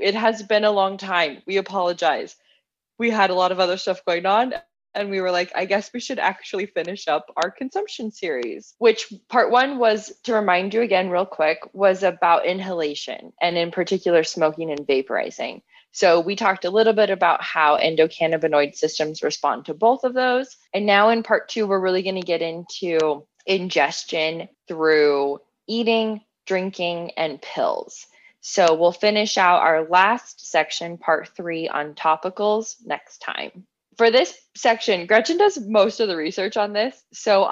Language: English